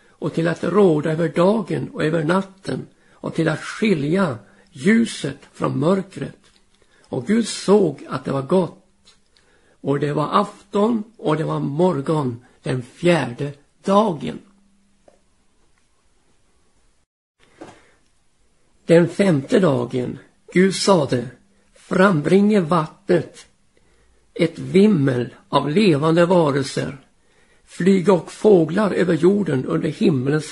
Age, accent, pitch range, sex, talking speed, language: 60-79, native, 150-195 Hz, male, 105 wpm, Swedish